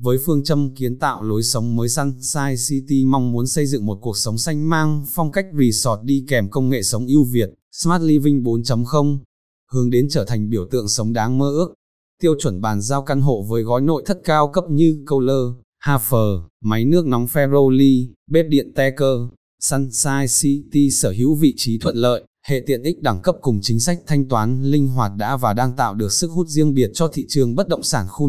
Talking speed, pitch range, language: 210 wpm, 115-150 Hz, Vietnamese